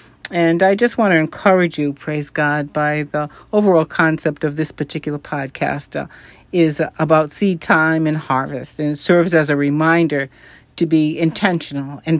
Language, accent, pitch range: English, American, 145-170 Hz